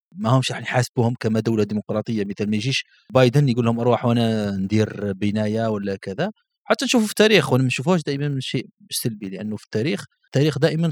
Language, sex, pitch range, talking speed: Arabic, male, 115-160 Hz, 175 wpm